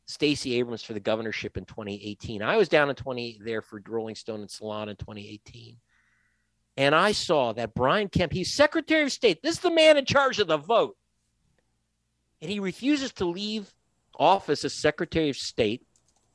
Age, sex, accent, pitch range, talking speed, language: 50-69, male, American, 115-165 Hz, 180 wpm, English